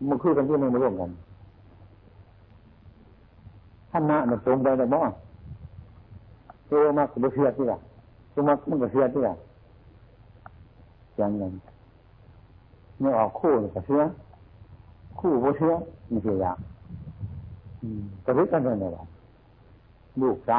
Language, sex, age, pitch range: Thai, male, 60-79, 95-120 Hz